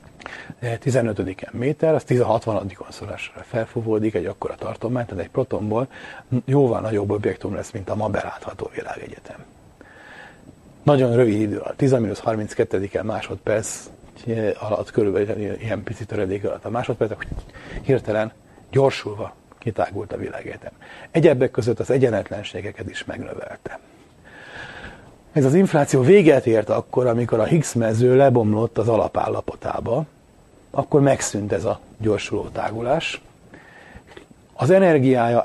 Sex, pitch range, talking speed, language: male, 110-130 Hz, 115 wpm, Hungarian